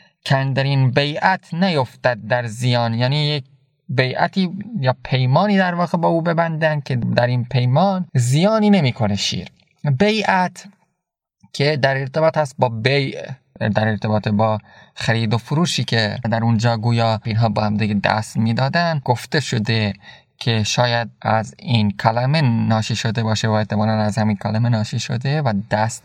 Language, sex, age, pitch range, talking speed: Persian, male, 20-39, 110-135 Hz, 145 wpm